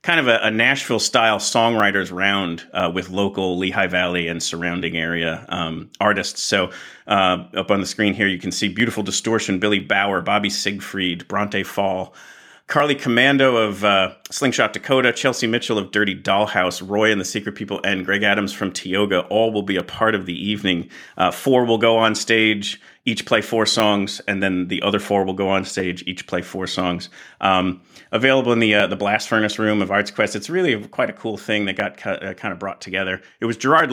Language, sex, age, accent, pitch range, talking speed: English, male, 40-59, American, 90-110 Hz, 200 wpm